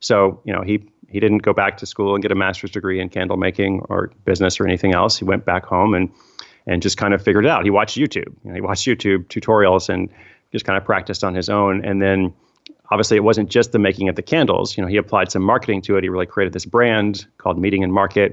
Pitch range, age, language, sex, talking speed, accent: 95-105 Hz, 30-49, English, male, 255 wpm, American